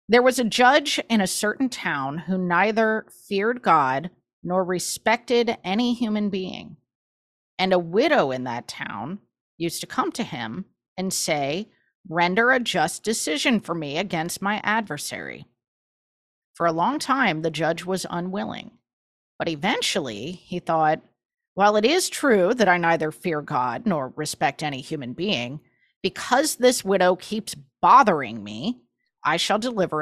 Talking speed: 150 wpm